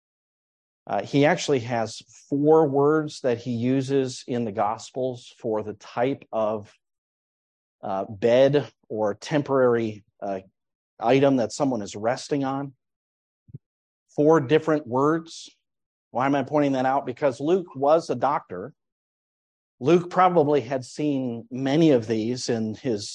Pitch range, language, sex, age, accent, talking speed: 110-140 Hz, English, male, 50-69, American, 130 wpm